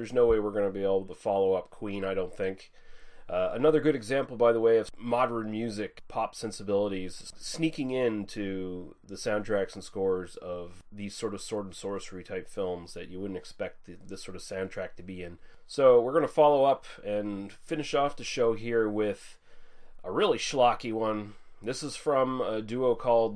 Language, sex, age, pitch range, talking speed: English, male, 30-49, 95-120 Hz, 195 wpm